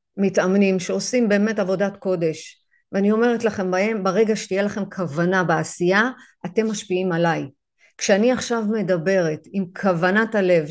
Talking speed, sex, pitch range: 125 wpm, female, 180-220 Hz